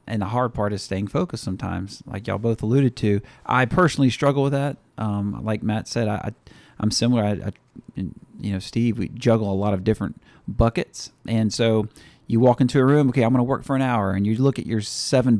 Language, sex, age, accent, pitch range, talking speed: English, male, 40-59, American, 105-125 Hz, 235 wpm